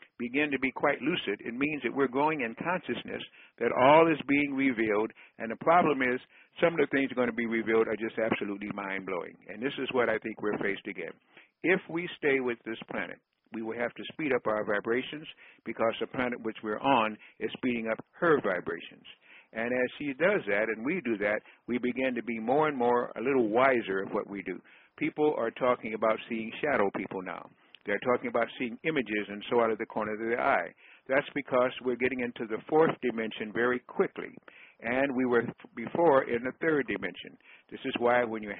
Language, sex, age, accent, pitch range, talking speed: English, male, 60-79, American, 110-130 Hz, 210 wpm